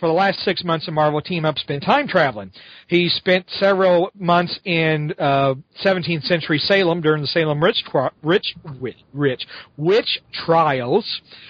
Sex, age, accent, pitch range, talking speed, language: male, 40-59, American, 155-195 Hz, 155 wpm, English